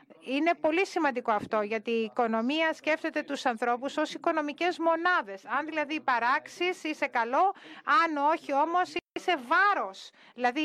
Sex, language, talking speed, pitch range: female, Greek, 135 wpm, 230-305 Hz